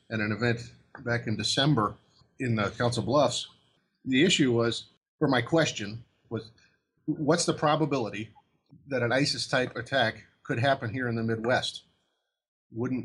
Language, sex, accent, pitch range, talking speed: English, male, American, 105-125 Hz, 145 wpm